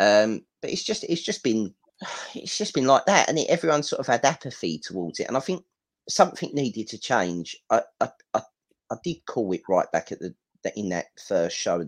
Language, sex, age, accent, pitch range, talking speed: English, male, 30-49, British, 90-135 Hz, 210 wpm